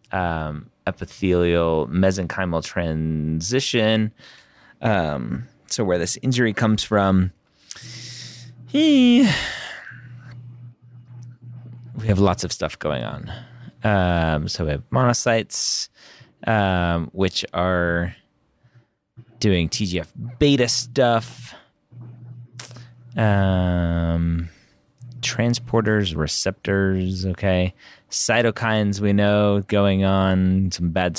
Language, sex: English, male